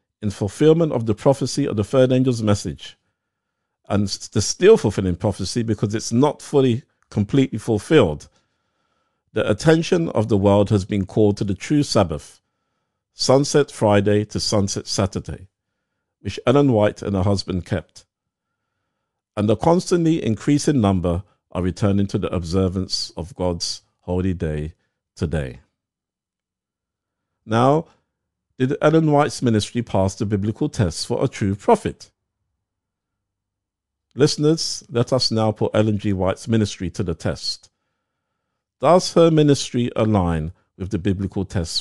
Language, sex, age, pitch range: English, male, 50-69, 95-125 Hz